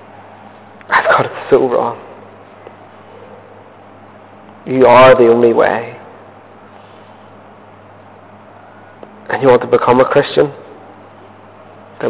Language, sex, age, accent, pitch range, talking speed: English, male, 30-49, British, 105-130 Hz, 85 wpm